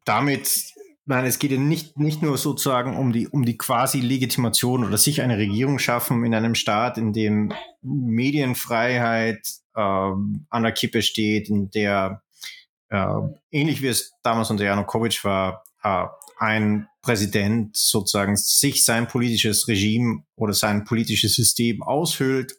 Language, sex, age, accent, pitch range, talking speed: German, male, 30-49, German, 110-135 Hz, 145 wpm